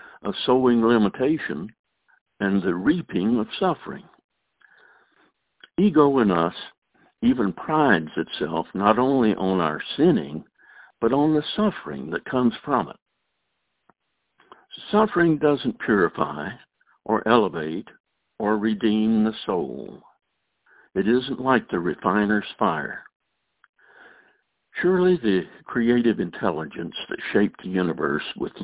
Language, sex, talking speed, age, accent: English, male, 105 wpm, 60-79, American